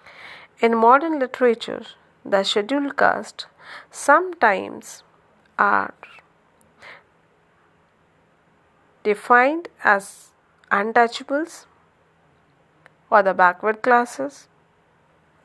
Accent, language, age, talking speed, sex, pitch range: Indian, English, 40-59, 60 wpm, female, 205-280 Hz